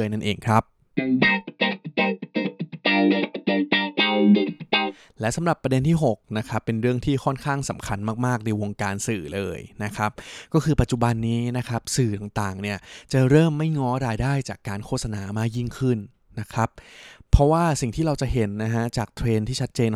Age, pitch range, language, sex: 20-39, 110-130 Hz, Thai, male